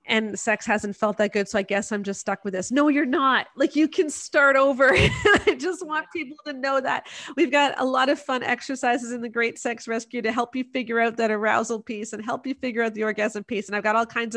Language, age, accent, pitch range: English, 40-59, American, 215-290 Hz